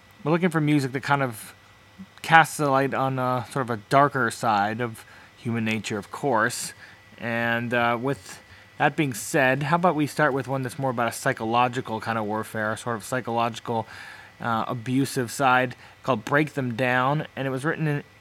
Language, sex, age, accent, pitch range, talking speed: English, male, 20-39, American, 110-140 Hz, 190 wpm